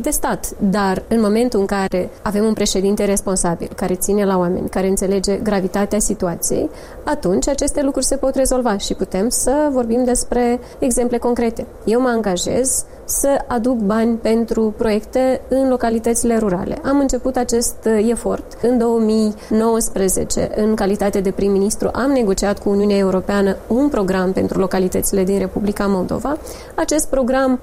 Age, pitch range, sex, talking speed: 20-39, 205-265 Hz, female, 145 wpm